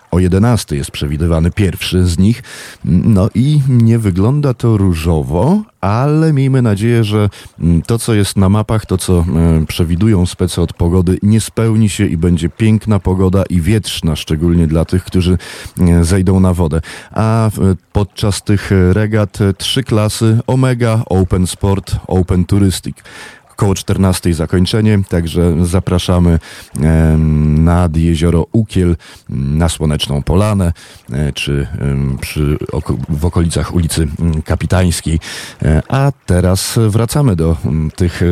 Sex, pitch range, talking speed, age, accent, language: male, 80-100 Hz, 115 wpm, 30-49, native, Polish